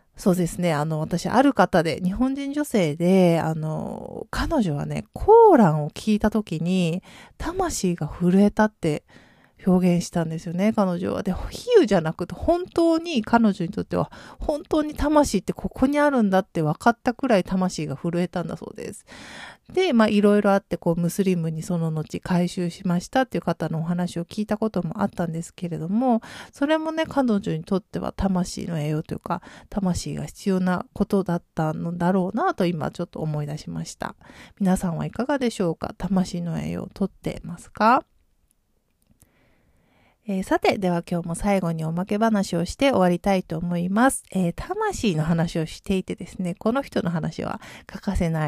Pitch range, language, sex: 170-220 Hz, Japanese, female